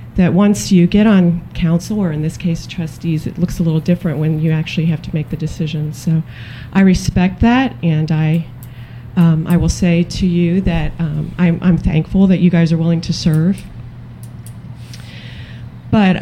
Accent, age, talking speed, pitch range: American, 40-59, 180 wpm, 155-185 Hz